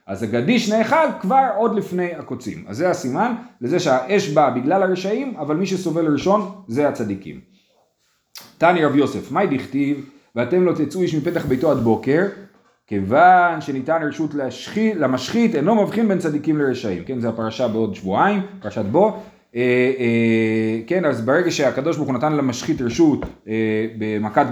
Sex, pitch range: male, 130-195 Hz